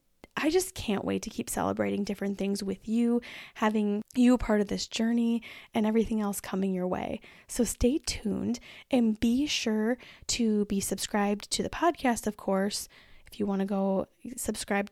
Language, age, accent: English, 10-29, American